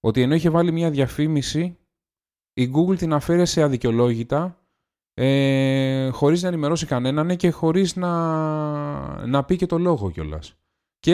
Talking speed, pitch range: 145 wpm, 110-155 Hz